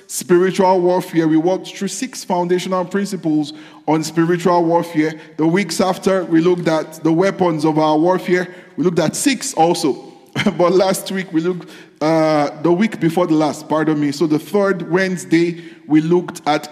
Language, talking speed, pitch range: English, 170 wpm, 160-195 Hz